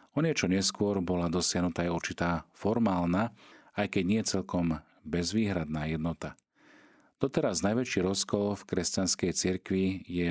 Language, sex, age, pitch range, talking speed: Slovak, male, 40-59, 85-95 Hz, 120 wpm